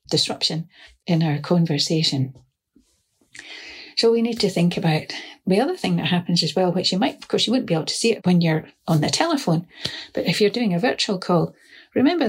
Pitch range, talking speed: 175-235 Hz, 205 wpm